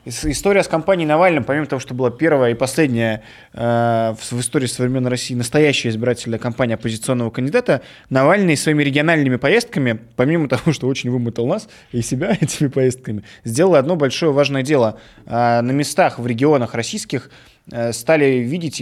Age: 20-39